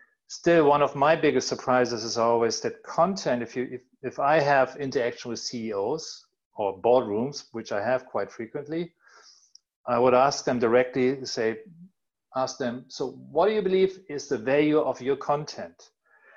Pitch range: 125-160 Hz